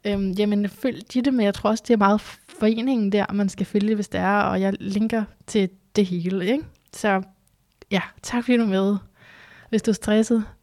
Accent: native